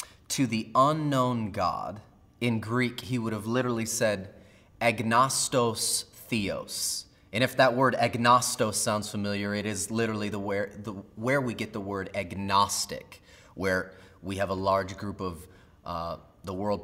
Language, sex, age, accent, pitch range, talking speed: English, male, 30-49, American, 100-125 Hz, 150 wpm